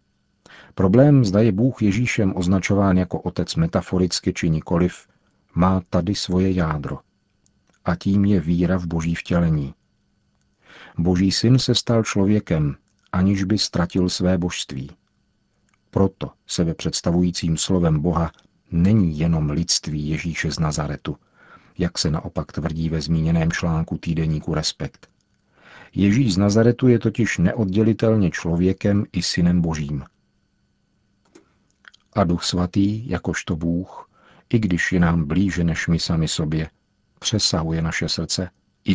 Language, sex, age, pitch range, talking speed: Czech, male, 50-69, 85-100 Hz, 125 wpm